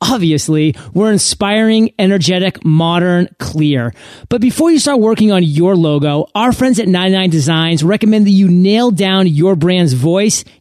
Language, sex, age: English, male, 30-49